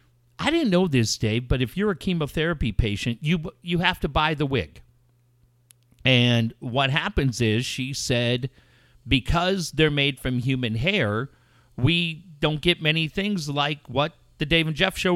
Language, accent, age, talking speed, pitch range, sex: English, American, 50-69, 165 wpm, 120-160 Hz, male